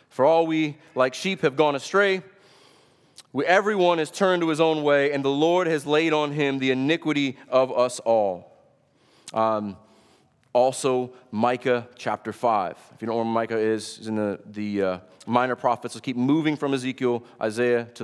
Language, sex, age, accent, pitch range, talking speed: English, male, 30-49, American, 125-170 Hz, 180 wpm